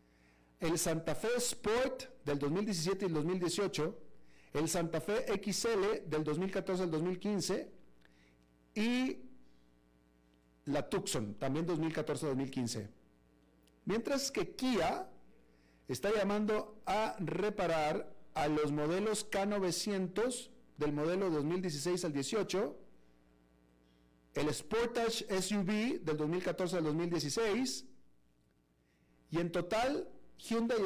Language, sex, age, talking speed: Spanish, male, 50-69, 100 wpm